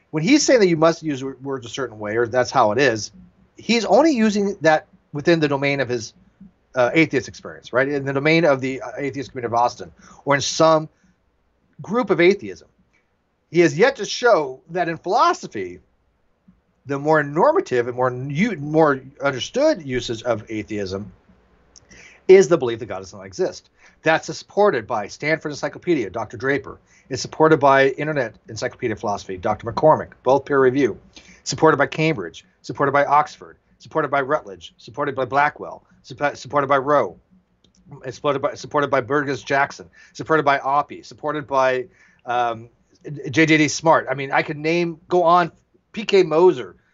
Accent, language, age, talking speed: American, English, 40-59, 160 wpm